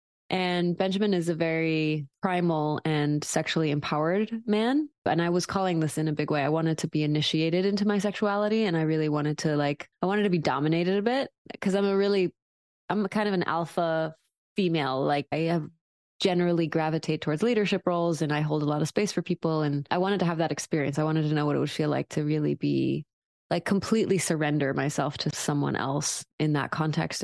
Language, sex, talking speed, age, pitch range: English, female, 210 wpm, 20-39, 150-180 Hz